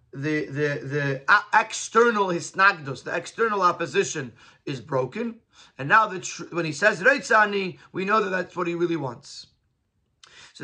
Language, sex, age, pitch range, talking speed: English, male, 30-49, 170-230 Hz, 160 wpm